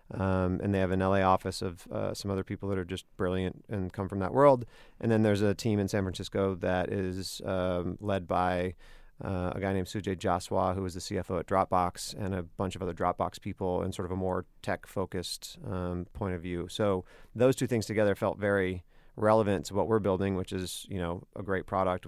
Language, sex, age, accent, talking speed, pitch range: English, male, 30-49, American, 225 wpm, 90-100 Hz